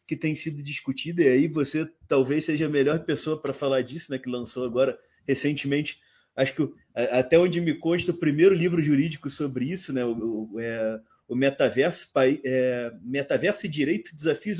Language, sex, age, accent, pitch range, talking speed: Portuguese, male, 30-49, Brazilian, 130-165 Hz, 180 wpm